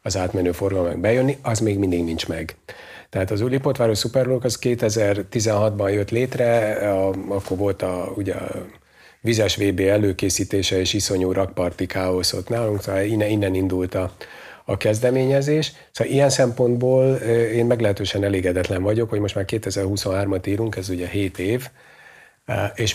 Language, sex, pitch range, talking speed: Hungarian, male, 95-120 Hz, 145 wpm